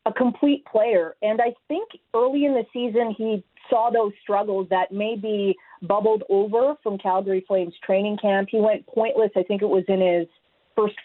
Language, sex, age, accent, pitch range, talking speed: English, female, 40-59, American, 195-230 Hz, 180 wpm